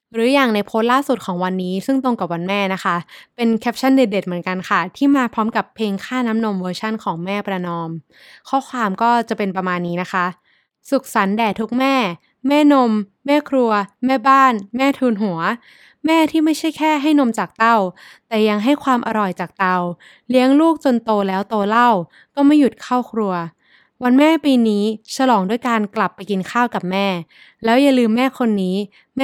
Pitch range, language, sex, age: 195-260 Hz, Thai, female, 20-39